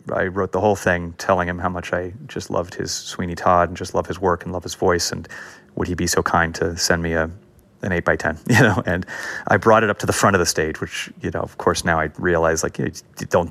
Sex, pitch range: male, 90-125 Hz